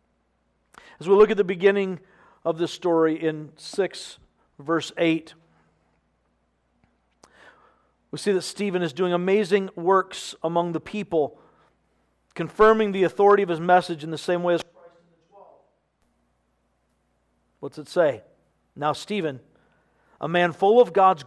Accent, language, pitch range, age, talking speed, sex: American, English, 155-210 Hz, 50-69, 130 wpm, male